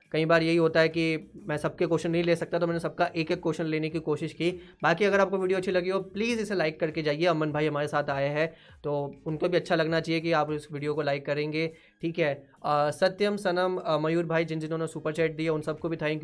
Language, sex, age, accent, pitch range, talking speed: Hindi, male, 20-39, native, 150-170 Hz, 250 wpm